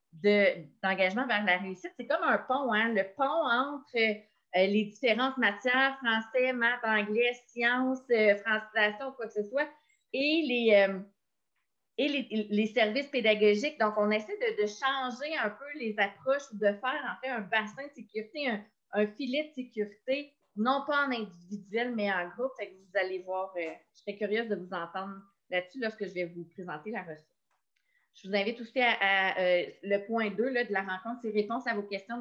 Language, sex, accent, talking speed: French, female, Canadian, 170 wpm